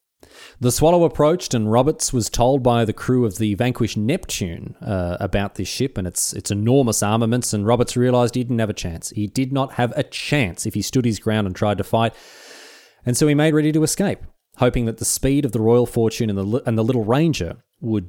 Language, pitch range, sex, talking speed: English, 105-135 Hz, male, 225 wpm